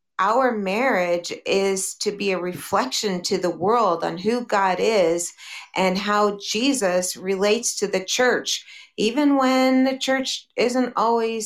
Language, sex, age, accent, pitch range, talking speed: English, female, 40-59, American, 185-230 Hz, 140 wpm